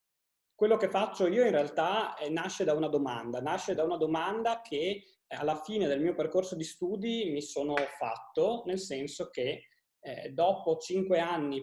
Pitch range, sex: 140-200 Hz, male